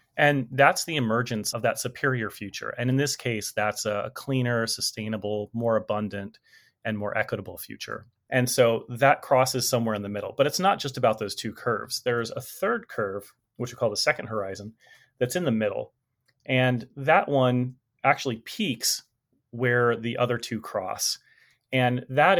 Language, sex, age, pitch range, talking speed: English, male, 30-49, 110-130 Hz, 170 wpm